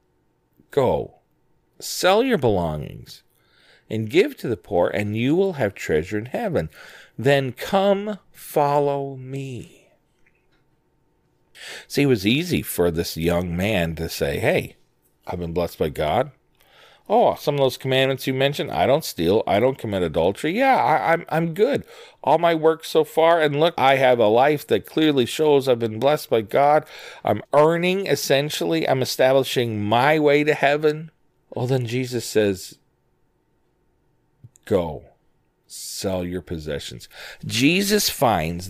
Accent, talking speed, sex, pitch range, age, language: American, 145 wpm, male, 105-145 Hz, 40-59, English